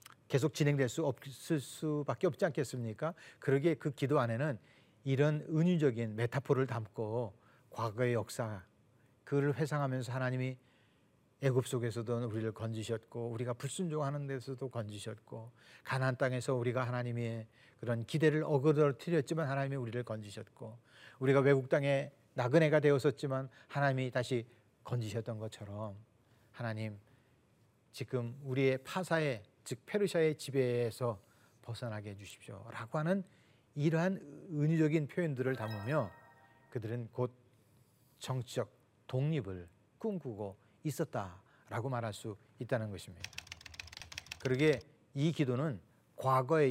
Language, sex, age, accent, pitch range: Korean, male, 40-59, native, 115-145 Hz